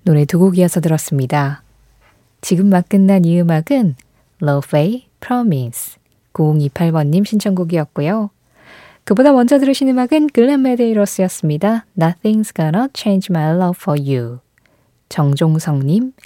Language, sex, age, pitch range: Korean, female, 20-39, 145-220 Hz